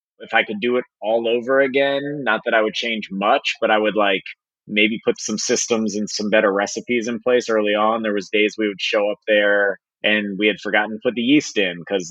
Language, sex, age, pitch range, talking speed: English, male, 30-49, 100-115 Hz, 240 wpm